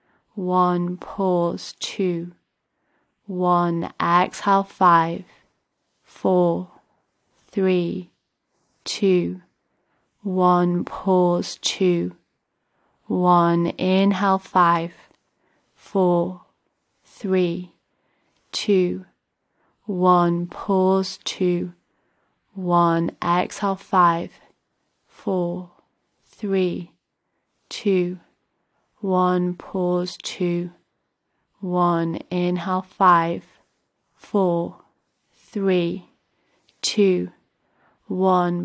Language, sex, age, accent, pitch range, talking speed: English, female, 30-49, British, 175-190 Hz, 55 wpm